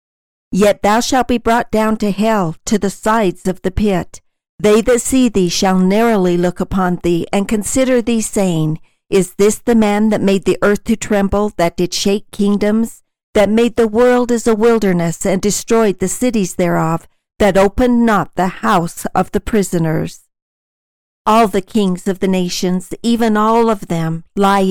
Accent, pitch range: American, 175-215 Hz